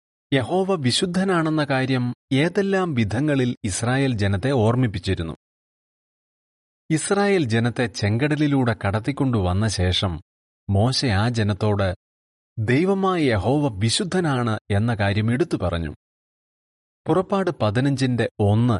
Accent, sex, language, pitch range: native, male, Malayalam, 90-135 Hz